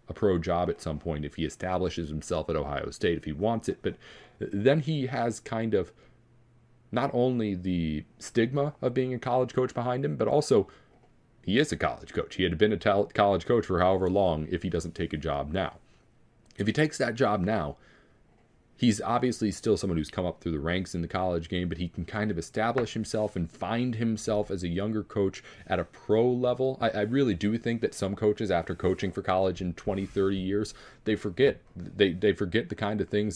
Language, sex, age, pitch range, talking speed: English, male, 30-49, 85-115 Hz, 215 wpm